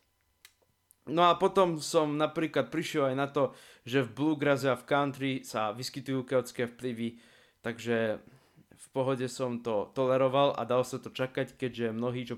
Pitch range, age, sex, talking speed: 120-140 Hz, 20-39, male, 160 wpm